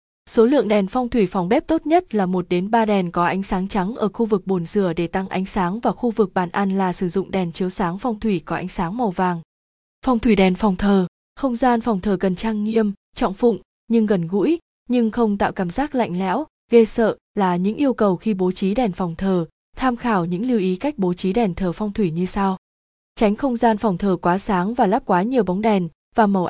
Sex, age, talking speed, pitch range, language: female, 20-39, 250 wpm, 185-230 Hz, Vietnamese